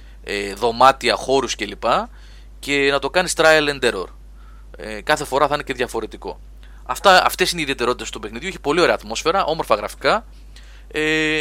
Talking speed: 160 wpm